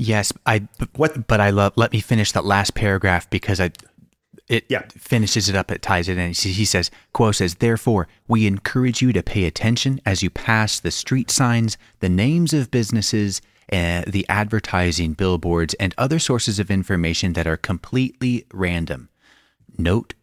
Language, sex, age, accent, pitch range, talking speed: English, male, 30-49, American, 85-110 Hz, 175 wpm